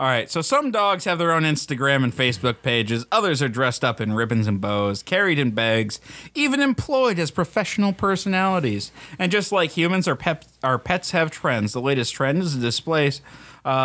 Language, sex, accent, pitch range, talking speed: English, male, American, 120-180 Hz, 180 wpm